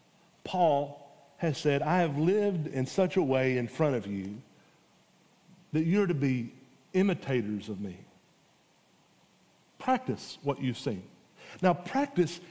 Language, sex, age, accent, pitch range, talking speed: English, male, 40-59, American, 170-220 Hz, 130 wpm